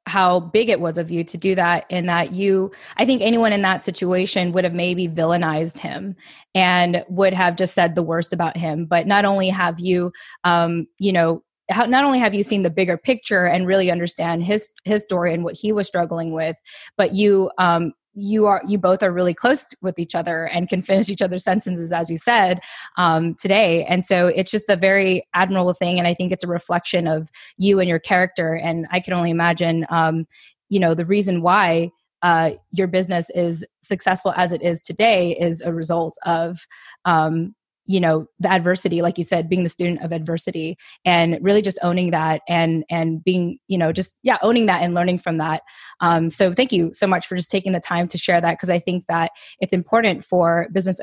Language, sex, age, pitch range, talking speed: English, female, 20-39, 170-195 Hz, 210 wpm